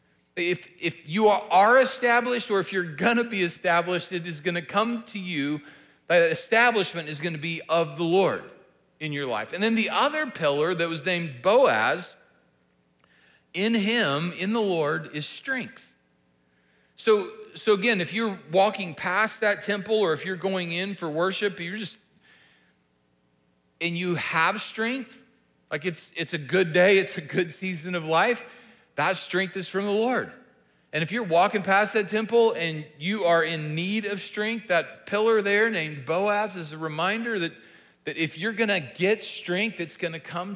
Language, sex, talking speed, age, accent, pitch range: English, male, 170 wpm, 40-59, American, 150-205 Hz